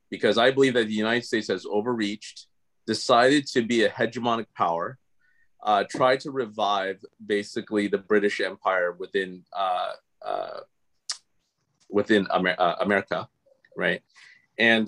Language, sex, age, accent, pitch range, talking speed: English, male, 30-49, American, 105-120 Hz, 125 wpm